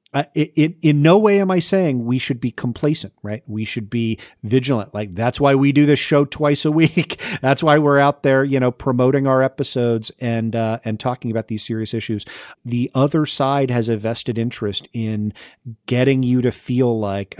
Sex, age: male, 40-59